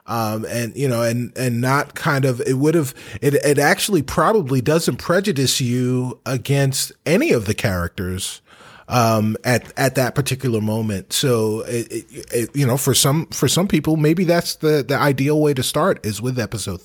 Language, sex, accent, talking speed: English, male, American, 185 wpm